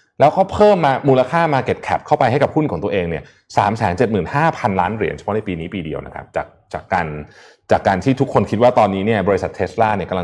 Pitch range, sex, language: 100-145 Hz, male, Thai